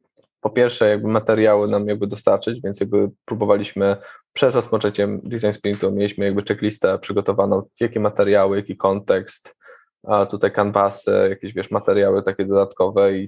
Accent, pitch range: native, 100-115 Hz